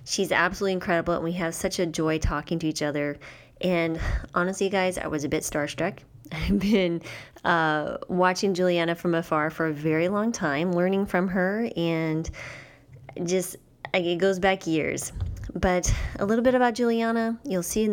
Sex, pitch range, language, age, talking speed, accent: female, 150-185 Hz, English, 20-39, 170 wpm, American